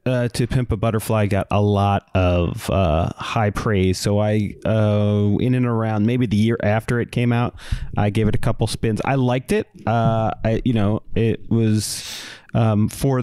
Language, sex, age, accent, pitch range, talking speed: English, male, 30-49, American, 100-120 Hz, 190 wpm